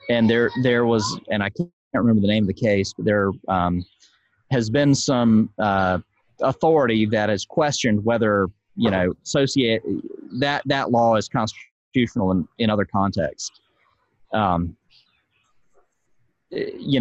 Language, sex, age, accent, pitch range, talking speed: English, male, 30-49, American, 100-130 Hz, 140 wpm